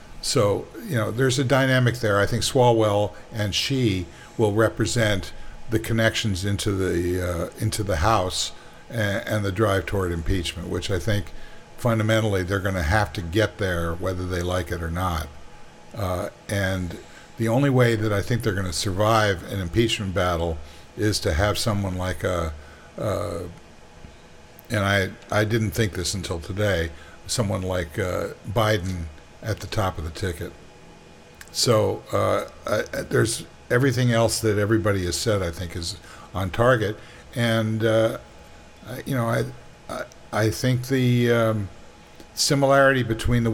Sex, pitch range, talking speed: male, 90-110 Hz, 150 wpm